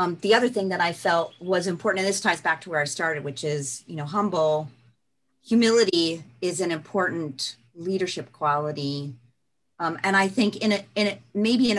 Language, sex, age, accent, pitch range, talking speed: English, female, 40-59, American, 145-200 Hz, 195 wpm